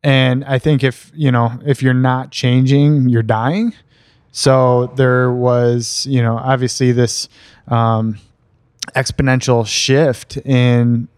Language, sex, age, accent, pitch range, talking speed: English, male, 20-39, American, 120-130 Hz, 125 wpm